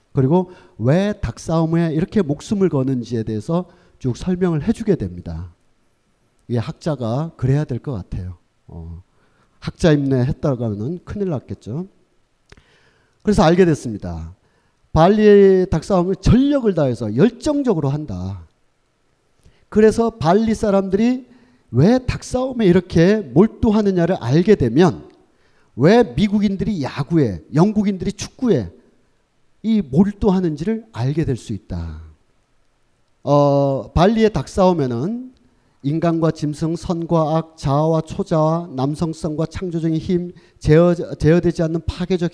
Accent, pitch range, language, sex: native, 125-195 Hz, Korean, male